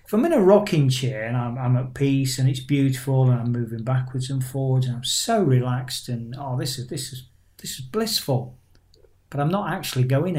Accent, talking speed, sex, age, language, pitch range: British, 220 wpm, male, 40-59, English, 125-155 Hz